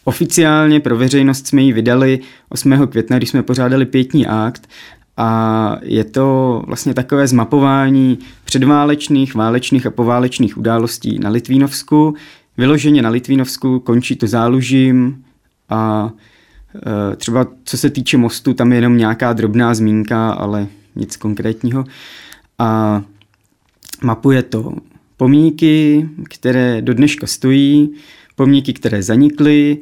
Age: 20-39